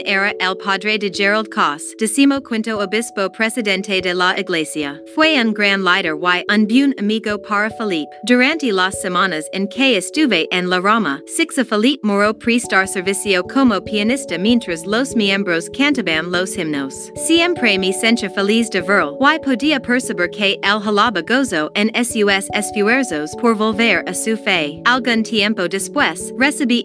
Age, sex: 30-49, female